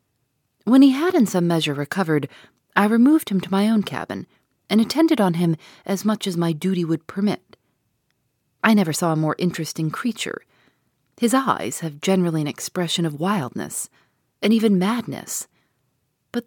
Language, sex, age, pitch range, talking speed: English, female, 40-59, 150-225 Hz, 160 wpm